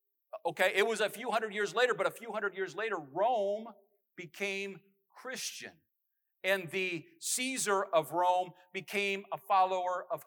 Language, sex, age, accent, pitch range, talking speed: English, male, 50-69, American, 165-215 Hz, 150 wpm